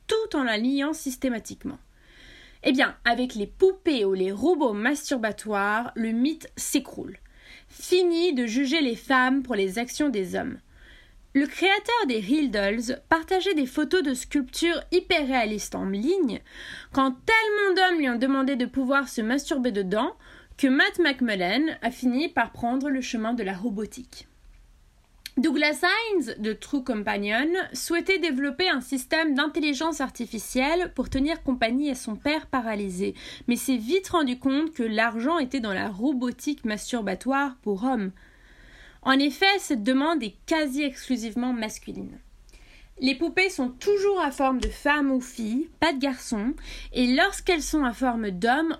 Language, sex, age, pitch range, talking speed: French, female, 20-39, 235-310 Hz, 150 wpm